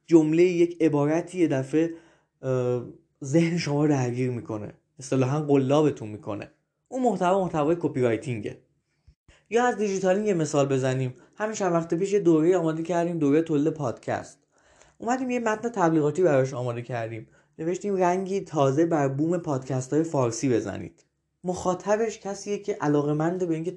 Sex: male